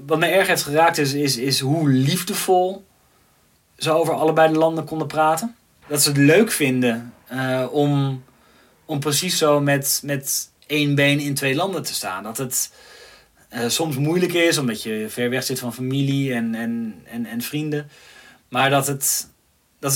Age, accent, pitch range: 30-49, Dutch, 120-150 Hz